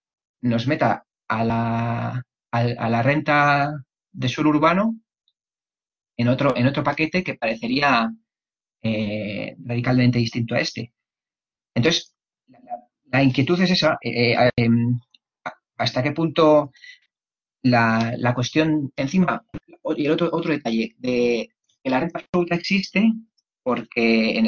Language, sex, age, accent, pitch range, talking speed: Spanish, male, 30-49, Spanish, 120-155 Hz, 125 wpm